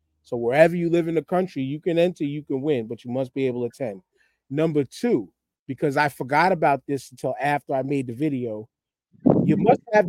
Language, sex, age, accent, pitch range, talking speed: English, male, 30-49, American, 120-155 Hz, 215 wpm